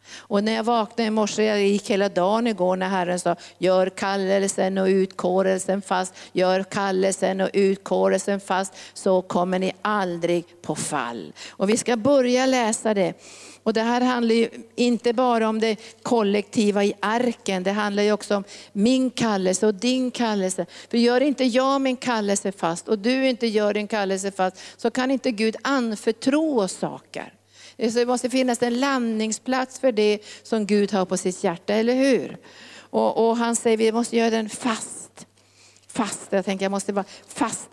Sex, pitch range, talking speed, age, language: female, 185-230 Hz, 175 wpm, 50-69, Swedish